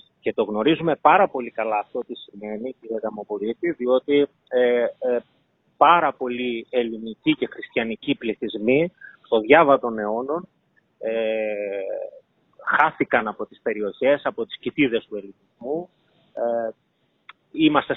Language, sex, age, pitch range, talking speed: Greek, male, 30-49, 115-180 Hz, 115 wpm